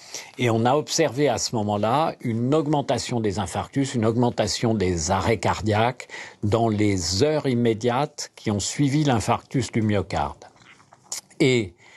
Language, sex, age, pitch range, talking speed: French, male, 50-69, 100-135 Hz, 135 wpm